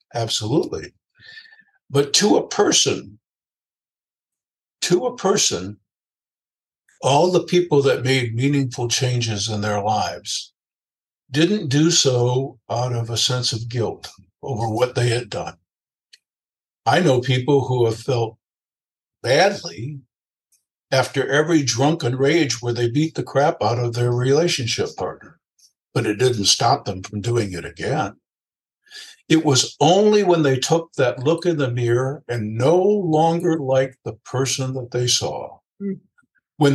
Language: English